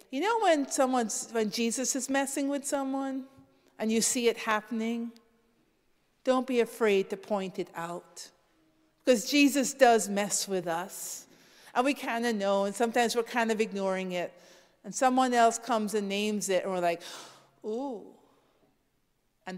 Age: 50-69